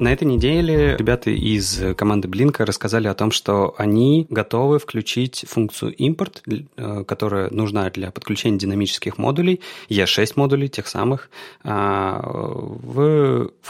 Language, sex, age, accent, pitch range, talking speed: Russian, male, 30-49, native, 100-130 Hz, 120 wpm